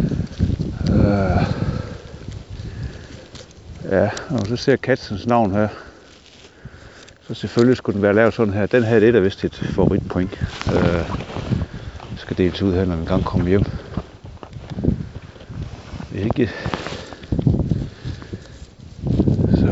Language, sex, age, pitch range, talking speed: Danish, male, 60-79, 105-135 Hz, 105 wpm